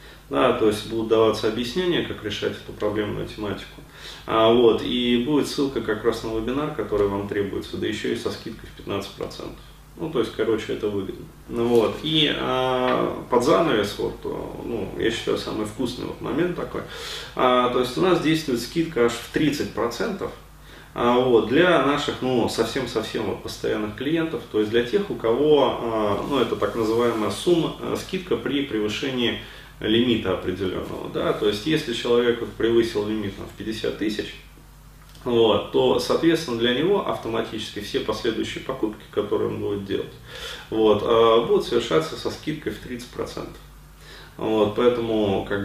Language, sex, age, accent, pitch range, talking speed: Russian, male, 20-39, native, 105-125 Hz, 155 wpm